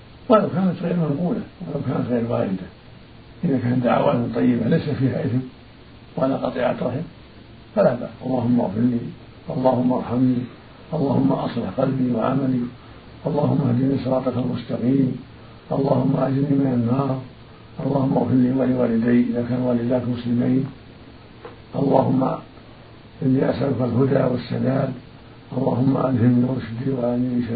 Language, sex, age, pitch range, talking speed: Arabic, male, 50-69, 115-140 Hz, 120 wpm